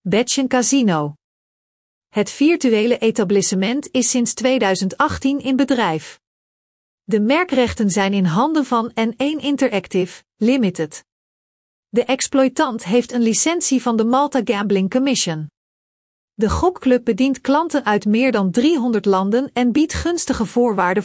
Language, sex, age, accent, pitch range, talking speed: Dutch, female, 40-59, Dutch, 200-270 Hz, 120 wpm